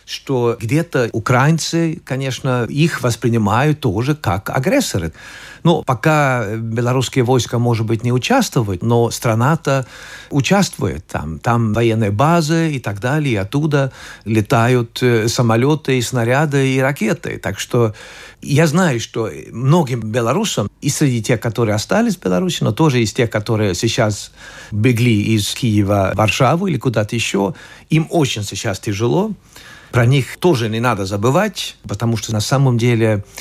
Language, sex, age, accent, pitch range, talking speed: Russian, male, 50-69, native, 110-140 Hz, 140 wpm